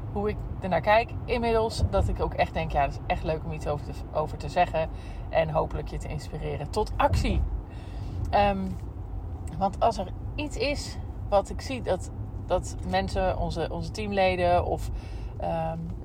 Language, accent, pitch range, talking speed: Dutch, Dutch, 90-120 Hz, 170 wpm